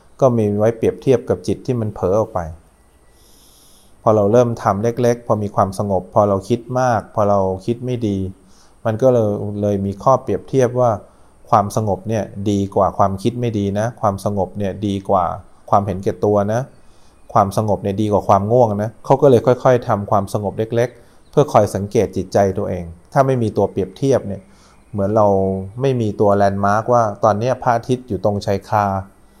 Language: English